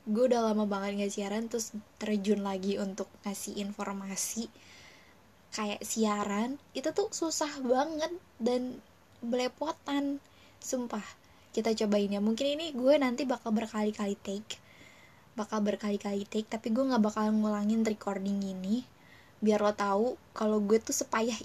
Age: 10-29